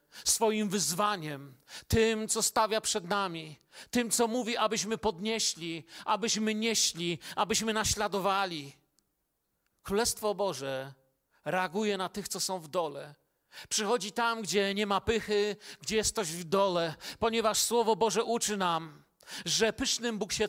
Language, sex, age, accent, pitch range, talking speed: Polish, male, 40-59, native, 180-230 Hz, 130 wpm